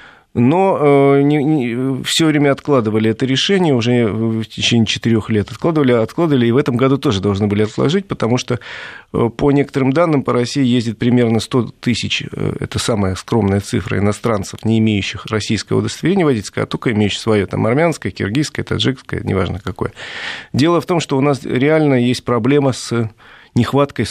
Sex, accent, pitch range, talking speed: male, native, 110-135 Hz, 160 wpm